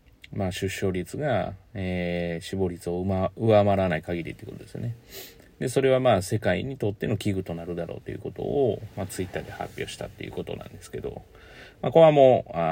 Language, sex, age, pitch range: Japanese, male, 40-59, 90-115 Hz